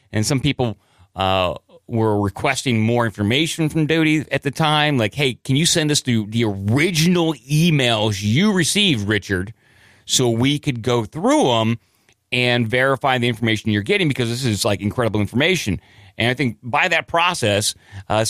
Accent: American